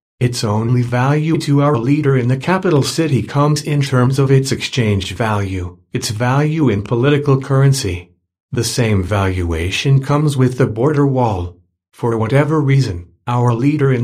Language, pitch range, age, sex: English, 110-145 Hz, 50-69, male